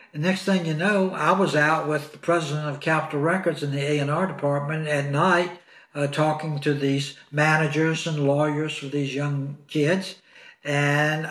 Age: 60-79